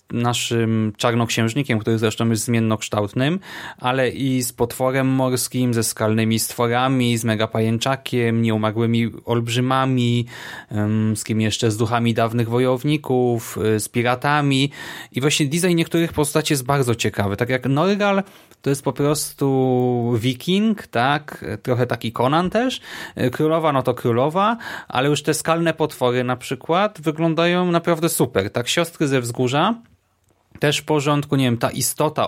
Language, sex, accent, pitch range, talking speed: Polish, male, native, 120-155 Hz, 140 wpm